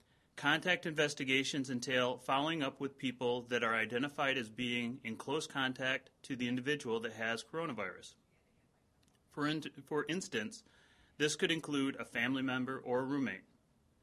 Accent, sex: American, male